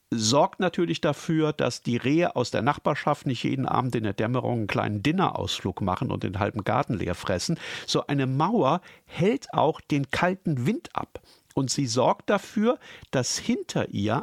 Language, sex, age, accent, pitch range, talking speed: German, male, 50-69, German, 110-150 Hz, 175 wpm